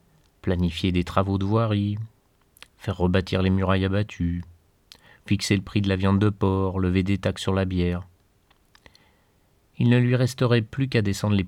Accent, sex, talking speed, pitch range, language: French, male, 165 wpm, 95-125 Hz, French